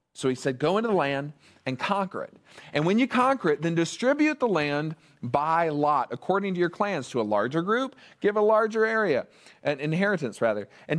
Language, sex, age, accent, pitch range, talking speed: English, male, 40-59, American, 155-210 Hz, 200 wpm